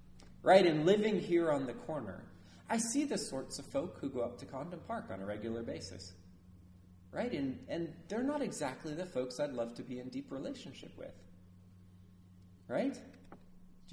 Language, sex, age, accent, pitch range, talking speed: English, male, 30-49, American, 90-140 Hz, 175 wpm